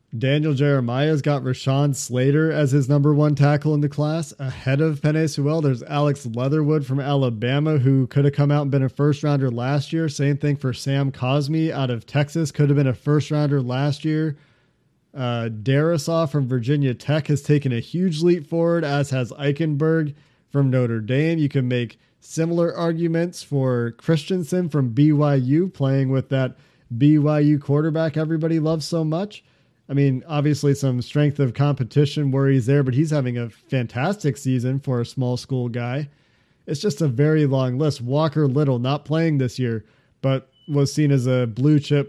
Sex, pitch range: male, 130-150 Hz